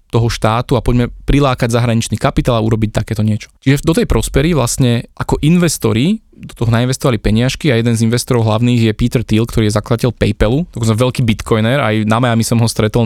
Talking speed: 200 wpm